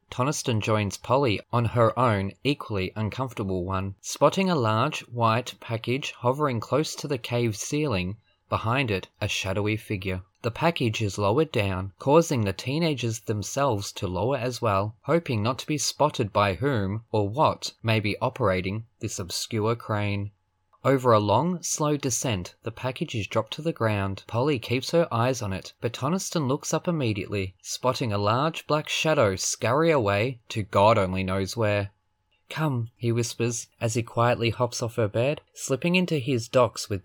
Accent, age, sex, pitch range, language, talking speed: Australian, 20-39, male, 105-135 Hz, English, 165 wpm